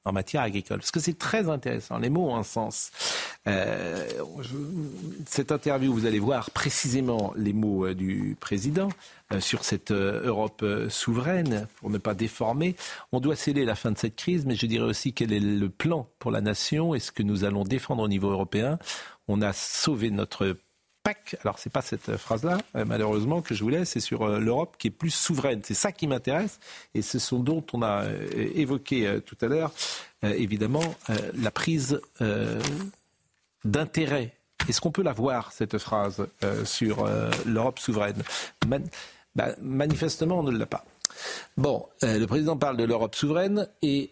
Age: 50-69